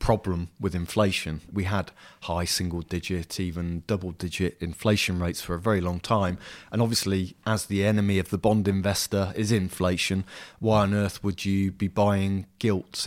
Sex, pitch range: male, 90-105 Hz